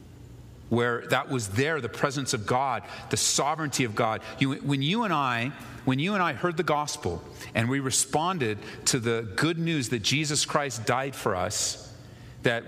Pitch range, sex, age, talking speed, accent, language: 115-140 Hz, male, 40-59, 180 wpm, American, English